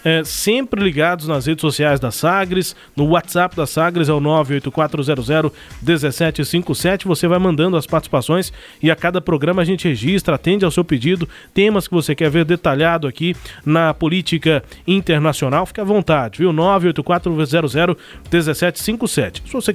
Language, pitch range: Portuguese, 150-185 Hz